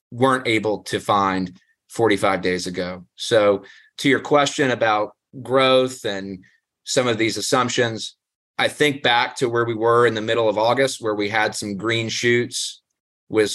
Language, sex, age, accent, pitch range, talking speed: English, male, 30-49, American, 100-115 Hz, 165 wpm